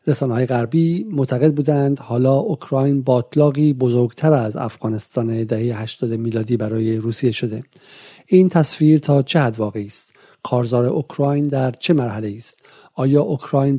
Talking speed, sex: 140 wpm, male